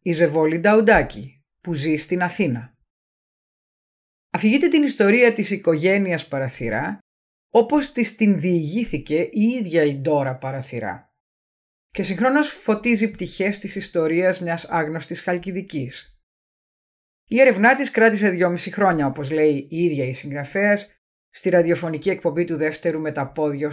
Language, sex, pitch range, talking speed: Greek, female, 150-200 Hz, 125 wpm